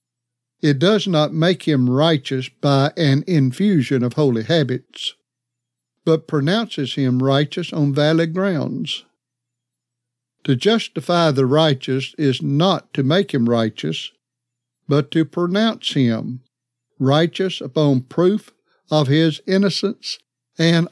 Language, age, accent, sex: English, 60-79, American, male